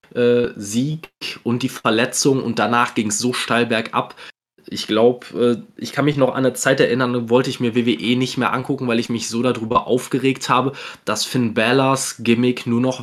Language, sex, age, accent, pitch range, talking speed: German, male, 20-39, German, 105-125 Hz, 195 wpm